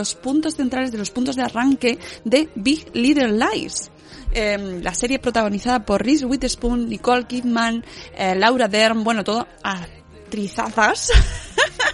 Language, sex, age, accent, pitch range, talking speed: Spanish, female, 20-39, Spanish, 210-270 Hz, 135 wpm